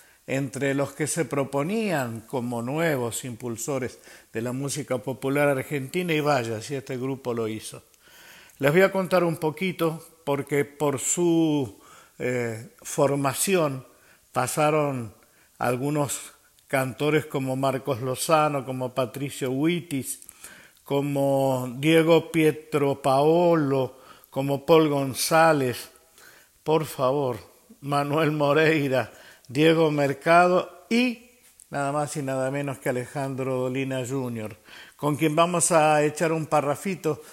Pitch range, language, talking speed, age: 130-155 Hz, Spanish, 115 wpm, 50-69